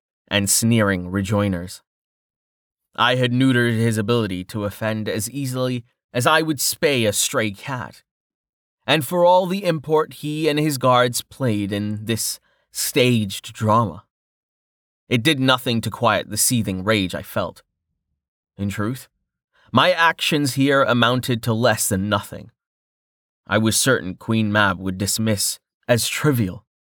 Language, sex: English, male